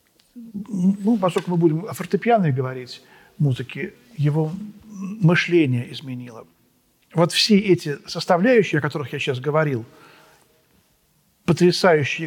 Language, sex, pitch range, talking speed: Russian, male, 155-195 Hz, 110 wpm